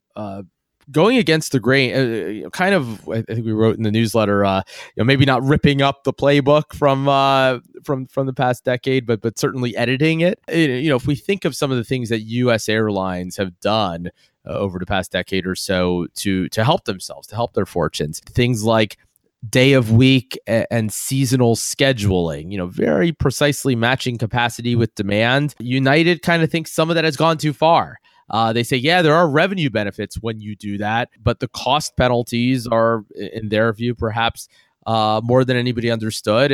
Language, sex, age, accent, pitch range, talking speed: English, male, 20-39, American, 110-140 Hz, 195 wpm